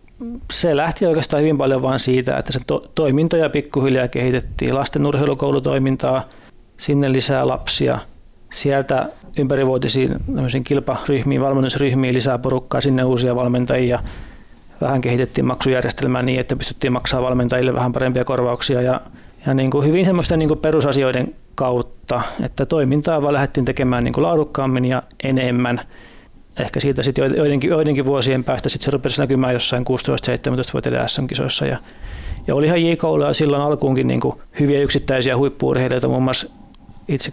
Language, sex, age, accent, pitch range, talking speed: Finnish, male, 30-49, native, 125-140 Hz, 130 wpm